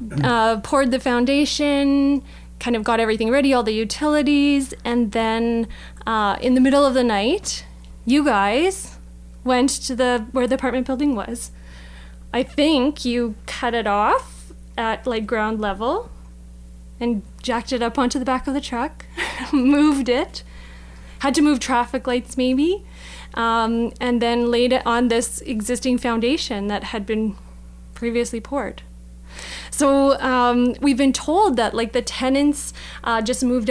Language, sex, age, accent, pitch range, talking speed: English, female, 20-39, American, 220-280 Hz, 150 wpm